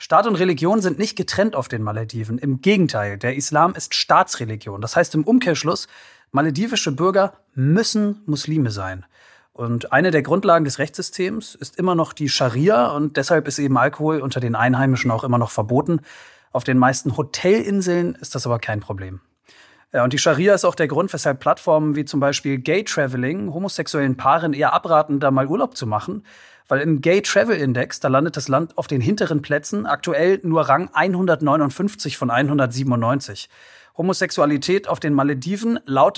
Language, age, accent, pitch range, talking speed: German, 30-49, German, 130-170 Hz, 165 wpm